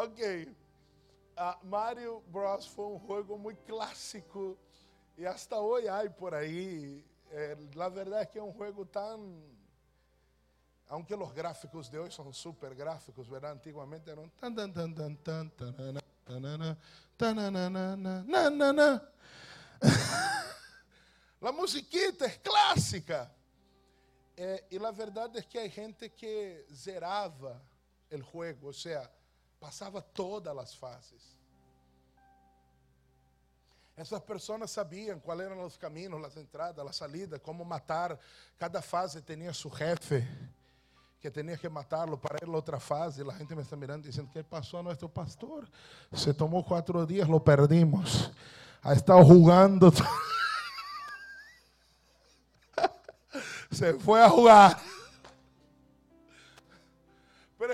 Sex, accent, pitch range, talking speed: male, Brazilian, 140-205 Hz, 120 wpm